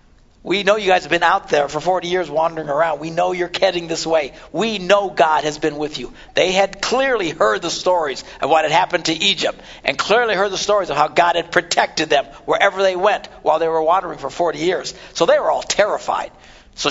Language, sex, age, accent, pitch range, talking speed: English, male, 60-79, American, 155-185 Hz, 230 wpm